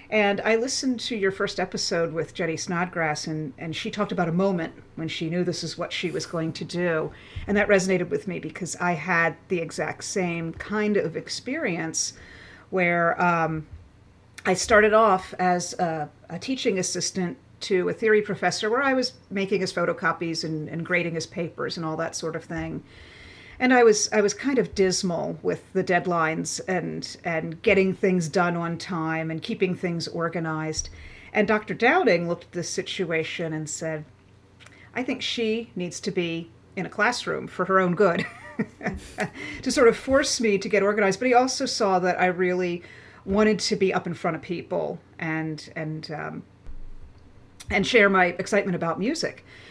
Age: 40-59